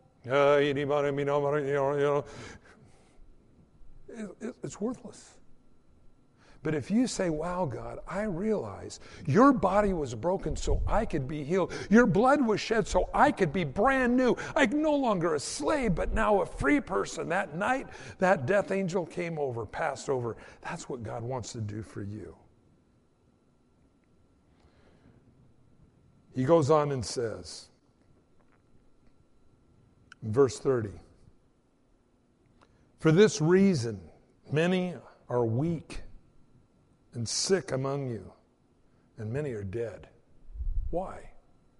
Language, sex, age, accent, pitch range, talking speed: English, male, 60-79, American, 130-205 Hz, 115 wpm